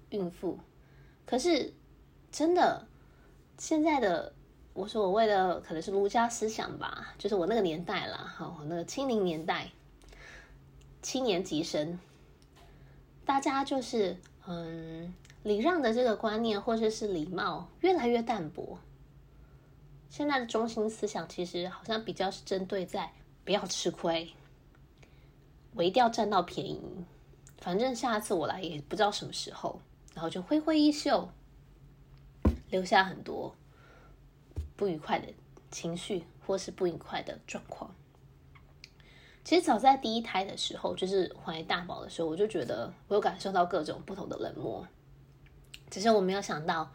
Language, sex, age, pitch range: Chinese, female, 20-39, 165-225 Hz